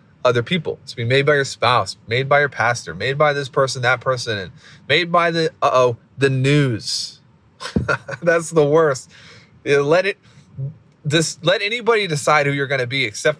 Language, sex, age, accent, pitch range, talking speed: English, male, 20-39, American, 120-155 Hz, 195 wpm